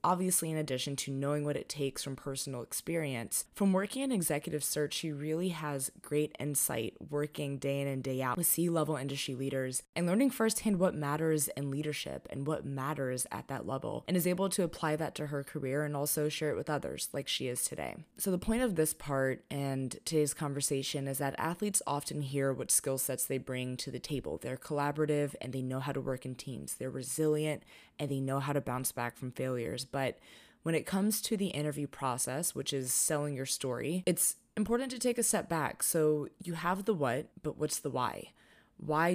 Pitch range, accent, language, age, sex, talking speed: 135-160 Hz, American, English, 20-39, female, 210 wpm